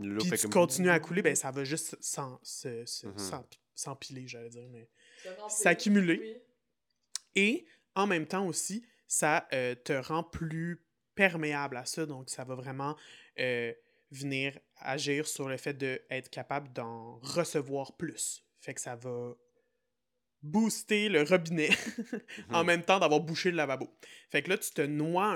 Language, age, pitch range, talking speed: French, 20-39, 130-175 Hz, 145 wpm